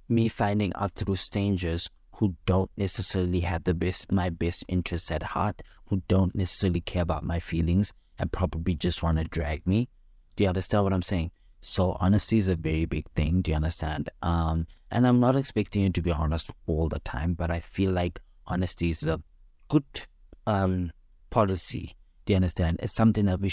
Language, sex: English, male